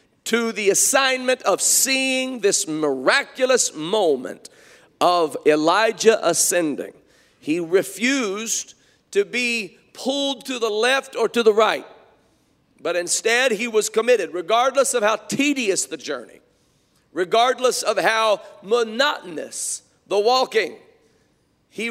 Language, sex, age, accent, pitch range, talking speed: English, male, 50-69, American, 170-255 Hz, 110 wpm